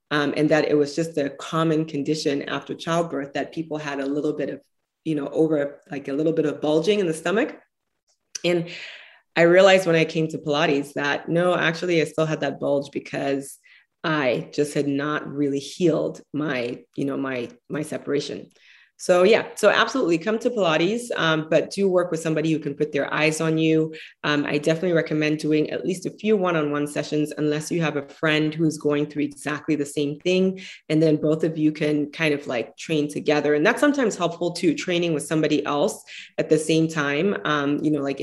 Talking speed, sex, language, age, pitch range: 205 wpm, female, English, 20-39, 145-165 Hz